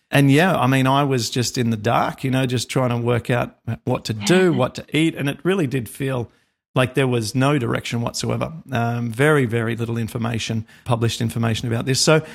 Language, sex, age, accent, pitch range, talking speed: English, male, 40-59, Australian, 120-155 Hz, 215 wpm